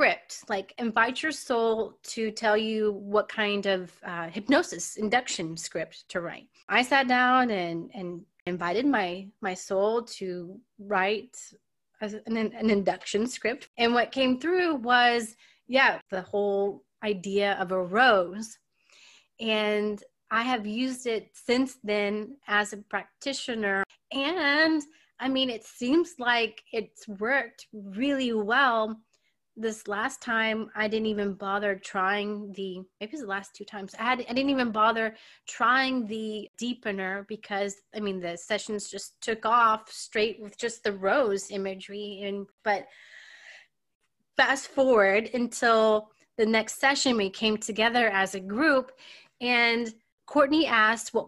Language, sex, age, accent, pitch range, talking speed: English, female, 30-49, American, 205-250 Hz, 140 wpm